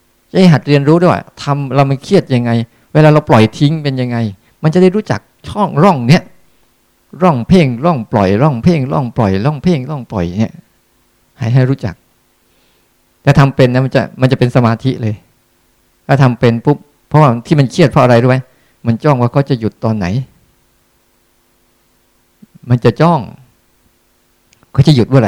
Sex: male